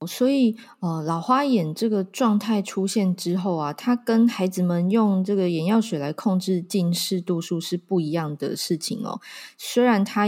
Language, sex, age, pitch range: Chinese, female, 20-39, 170-210 Hz